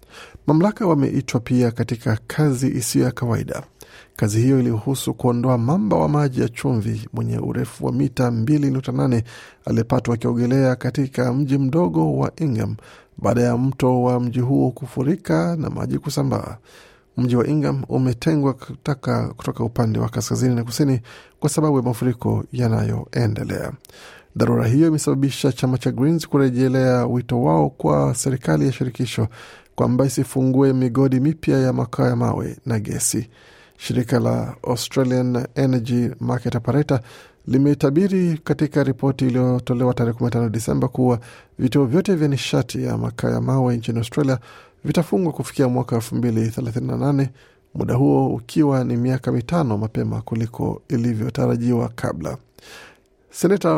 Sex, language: male, Swahili